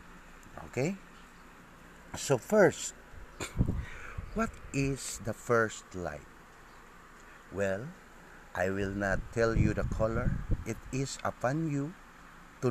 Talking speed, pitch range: 100 wpm, 95-125 Hz